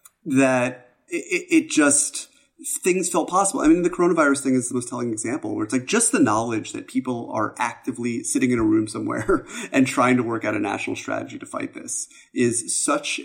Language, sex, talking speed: English, male, 205 wpm